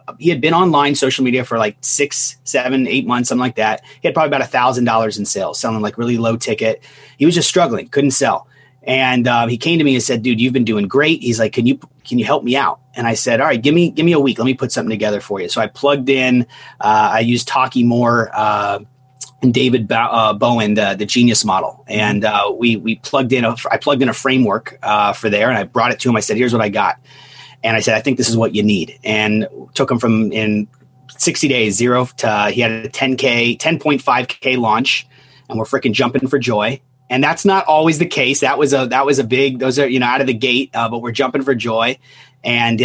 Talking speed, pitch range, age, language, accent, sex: 250 wpm, 115-135 Hz, 30-49, English, American, male